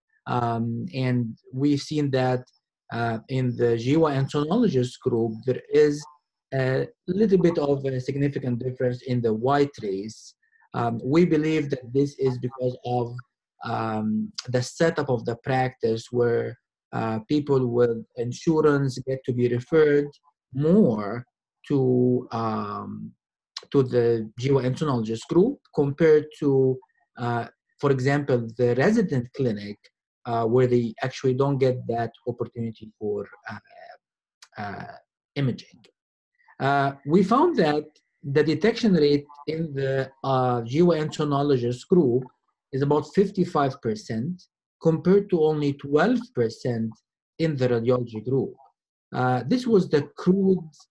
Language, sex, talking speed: English, male, 120 wpm